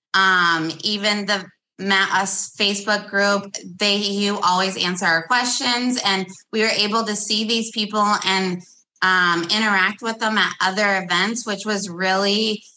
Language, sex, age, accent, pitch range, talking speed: English, female, 20-39, American, 205-245 Hz, 150 wpm